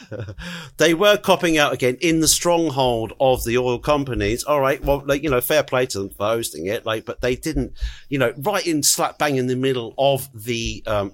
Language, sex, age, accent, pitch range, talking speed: English, male, 50-69, British, 105-140 Hz, 220 wpm